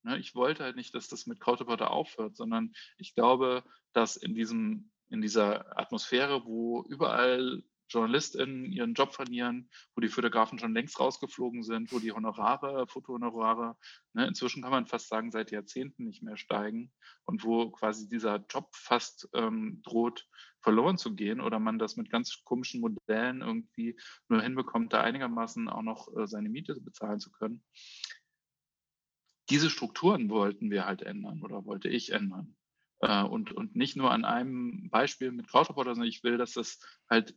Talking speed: 165 wpm